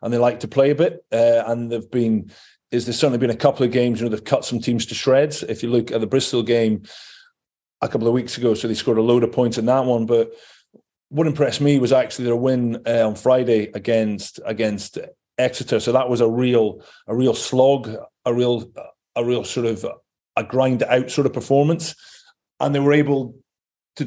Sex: male